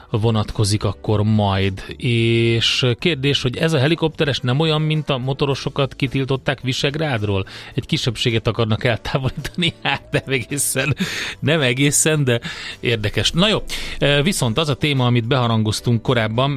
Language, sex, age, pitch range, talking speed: Hungarian, male, 30-49, 115-140 Hz, 130 wpm